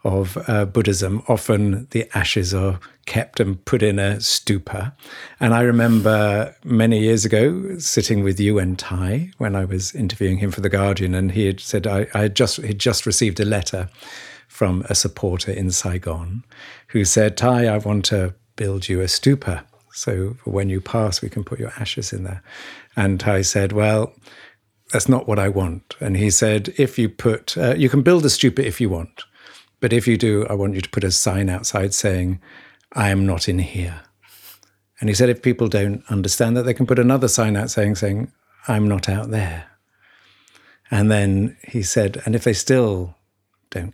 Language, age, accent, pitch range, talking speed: English, 50-69, British, 95-115 Hz, 195 wpm